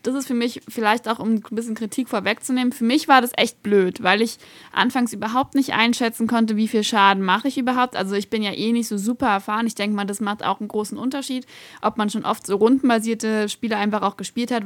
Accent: German